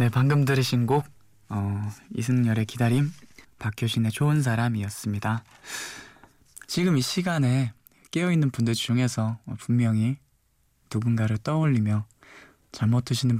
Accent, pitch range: native, 115-140 Hz